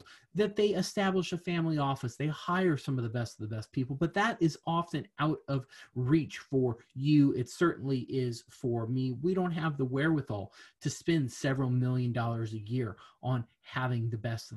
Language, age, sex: English, 30-49, male